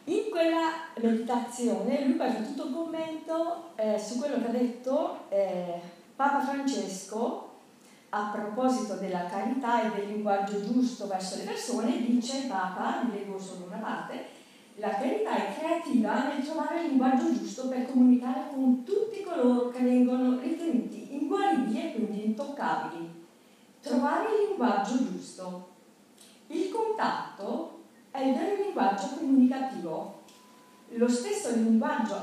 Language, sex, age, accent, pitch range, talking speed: Italian, female, 40-59, native, 220-280 Hz, 125 wpm